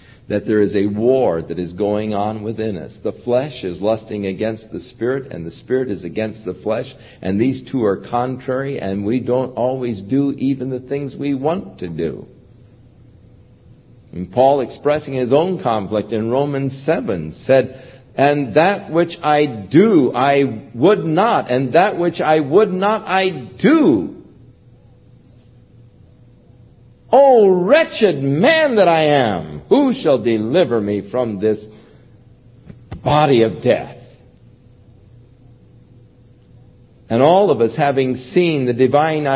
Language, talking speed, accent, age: English, 140 wpm, American, 50-69